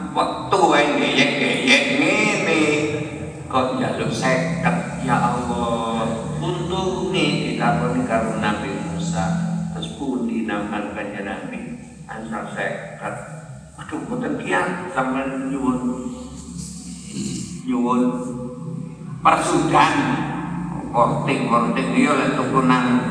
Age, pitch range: 50-69, 125-170 Hz